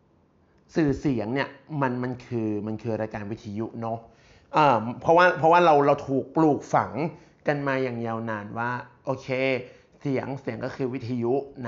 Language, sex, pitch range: Thai, male, 115-155 Hz